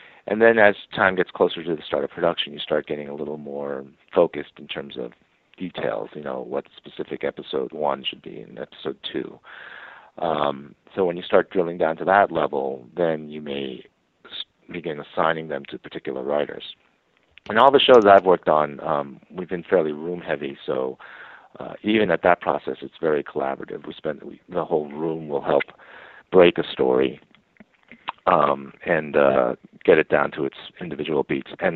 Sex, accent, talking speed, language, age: male, American, 180 wpm, English, 50-69